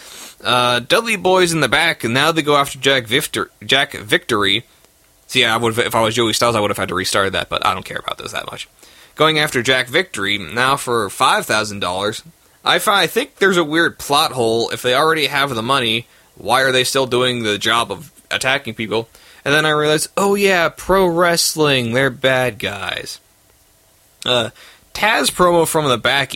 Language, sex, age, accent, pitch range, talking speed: English, male, 20-39, American, 110-145 Hz, 185 wpm